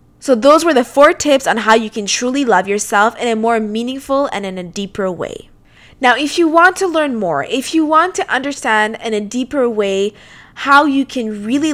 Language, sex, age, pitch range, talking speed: English, female, 20-39, 210-270 Hz, 215 wpm